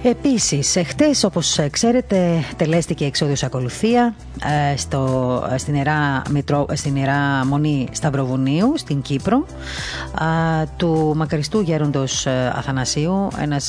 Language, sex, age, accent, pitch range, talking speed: Greek, female, 30-49, native, 135-170 Hz, 90 wpm